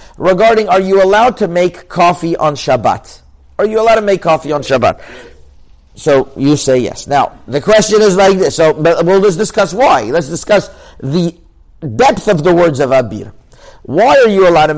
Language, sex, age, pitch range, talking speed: English, male, 50-69, 150-210 Hz, 190 wpm